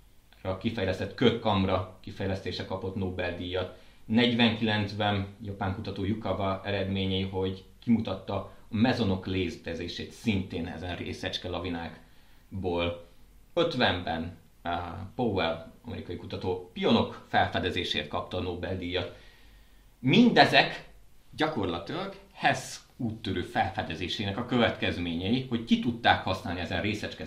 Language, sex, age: Hungarian, male, 30-49